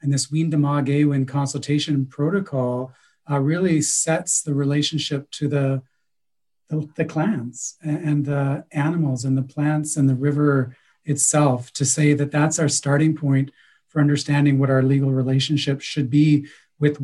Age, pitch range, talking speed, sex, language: 40-59, 135-150 Hz, 155 wpm, male, French